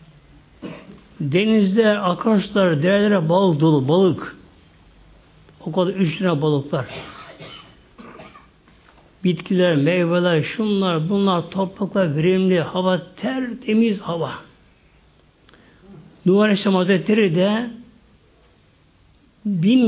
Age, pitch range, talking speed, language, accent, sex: 60-79, 150-210 Hz, 65 wpm, Turkish, native, male